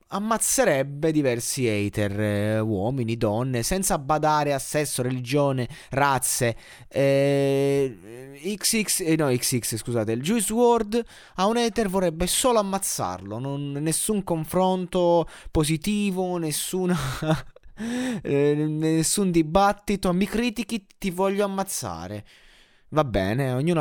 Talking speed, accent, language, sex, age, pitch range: 105 wpm, native, Italian, male, 20-39, 115-160 Hz